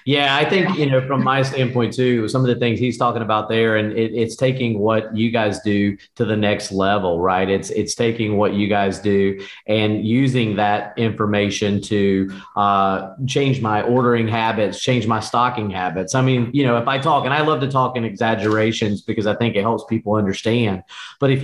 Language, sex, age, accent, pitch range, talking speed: English, male, 40-59, American, 100-125 Hz, 205 wpm